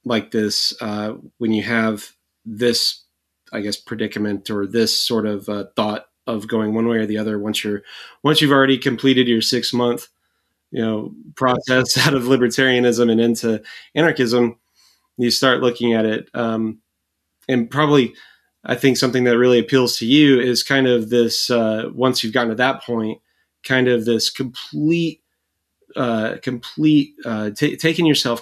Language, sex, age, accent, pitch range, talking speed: English, male, 30-49, American, 115-130 Hz, 165 wpm